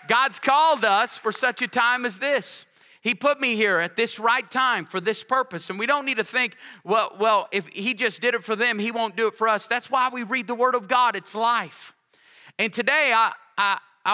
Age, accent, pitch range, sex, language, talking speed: 30-49, American, 190-225 Hz, male, English, 230 wpm